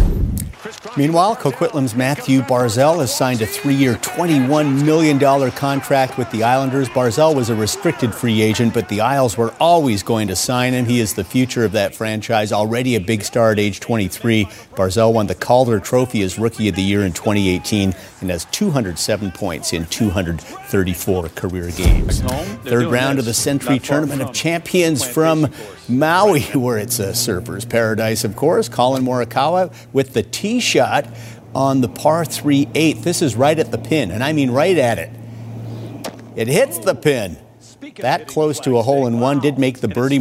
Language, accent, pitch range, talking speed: English, American, 110-140 Hz, 175 wpm